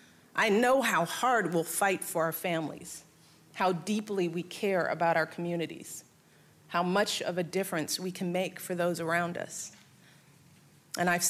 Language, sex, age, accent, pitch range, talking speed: English, female, 40-59, American, 175-230 Hz, 160 wpm